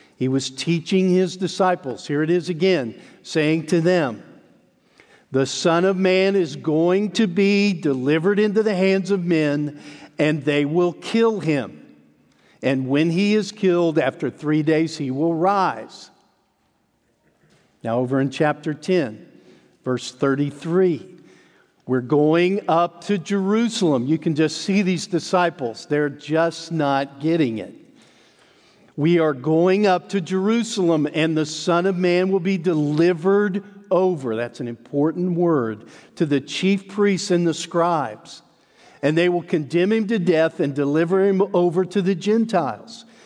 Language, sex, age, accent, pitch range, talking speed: English, male, 50-69, American, 145-190 Hz, 145 wpm